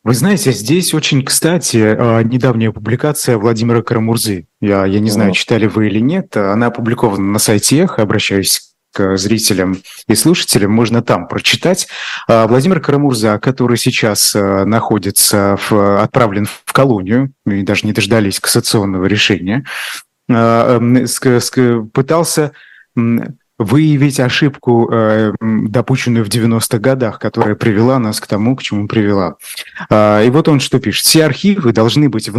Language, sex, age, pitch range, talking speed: Russian, male, 30-49, 105-130 Hz, 130 wpm